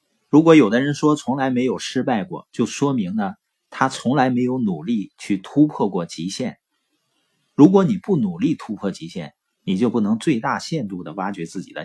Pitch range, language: 120-190 Hz, Chinese